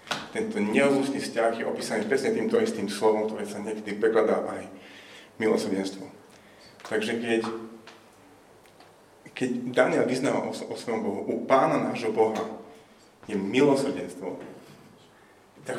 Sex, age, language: male, 30-49, Slovak